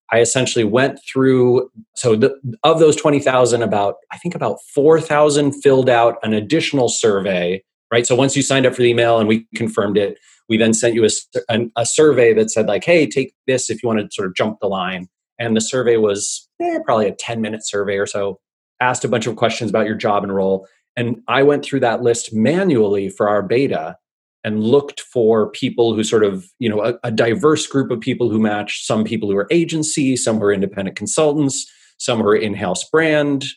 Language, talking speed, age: English, 205 wpm, 30-49